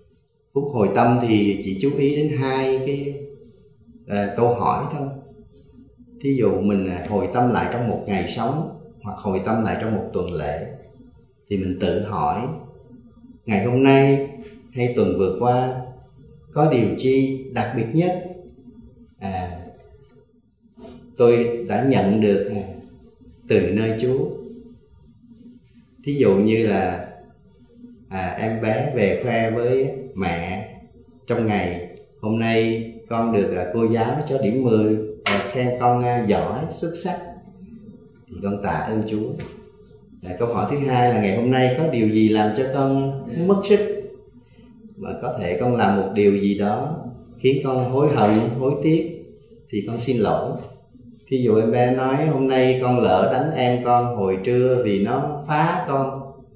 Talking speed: 145 wpm